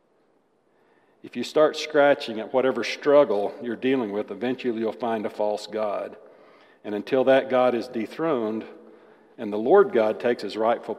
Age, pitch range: 50-69, 105-130 Hz